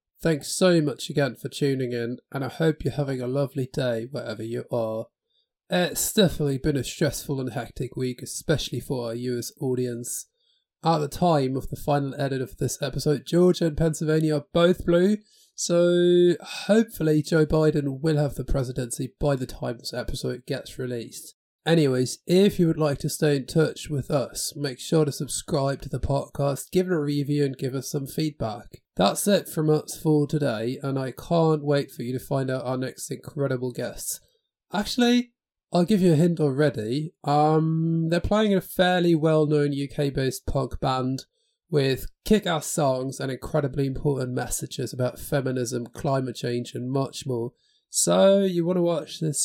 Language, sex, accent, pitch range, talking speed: English, male, British, 130-165 Hz, 175 wpm